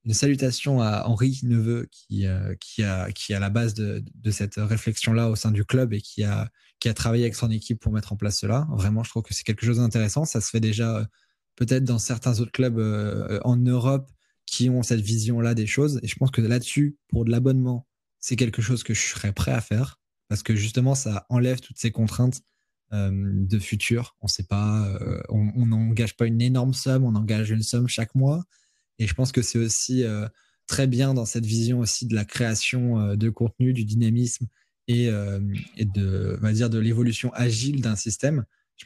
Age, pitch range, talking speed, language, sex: 20-39, 105-125 Hz, 220 wpm, French, male